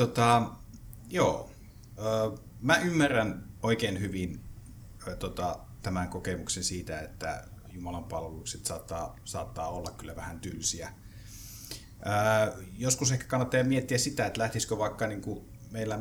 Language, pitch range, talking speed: Finnish, 90-115 Hz, 100 wpm